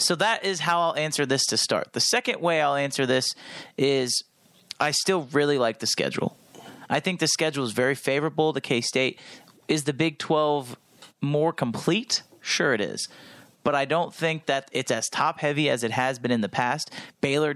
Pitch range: 135-165 Hz